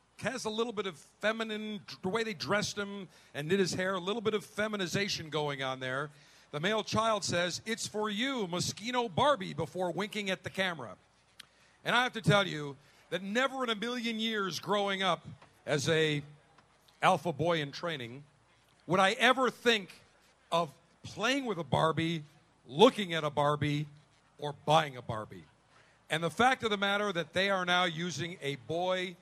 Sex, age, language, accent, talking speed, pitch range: male, 50-69, English, American, 180 wpm, 155-205 Hz